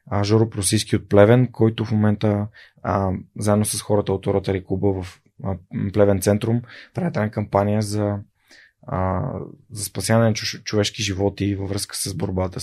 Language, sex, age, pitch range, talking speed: Bulgarian, male, 20-39, 95-115 Hz, 150 wpm